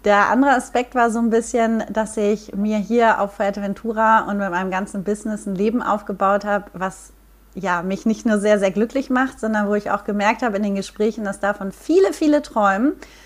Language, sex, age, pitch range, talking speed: German, female, 30-49, 195-230 Hz, 205 wpm